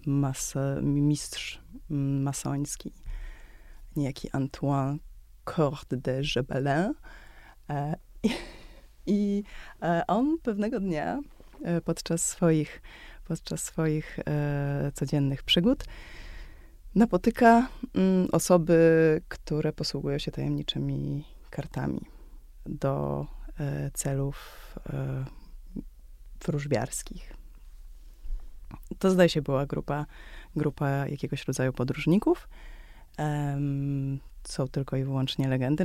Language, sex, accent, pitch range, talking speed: Polish, female, native, 140-180 Hz, 80 wpm